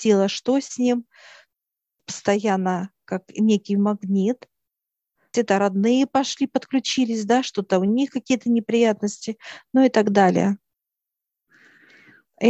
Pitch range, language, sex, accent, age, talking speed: 200-230 Hz, Russian, female, native, 50-69, 110 wpm